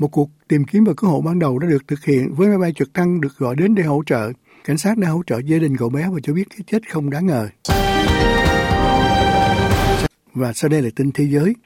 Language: Vietnamese